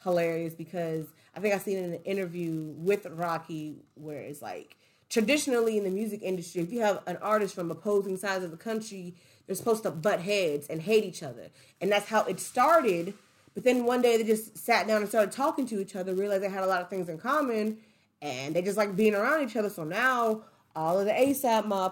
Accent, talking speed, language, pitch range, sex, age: American, 225 wpm, English, 165-215 Hz, female, 30-49